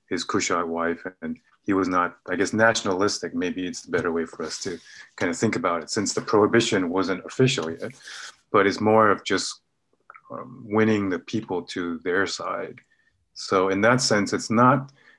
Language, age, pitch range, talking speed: English, 30-49, 95-125 Hz, 185 wpm